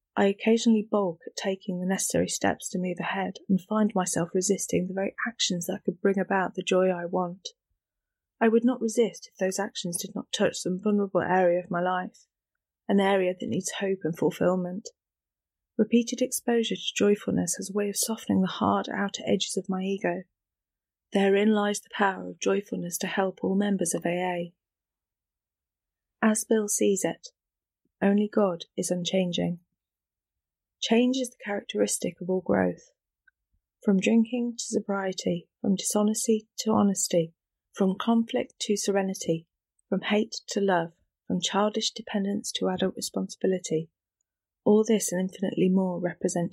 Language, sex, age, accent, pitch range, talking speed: English, female, 30-49, British, 180-215 Hz, 155 wpm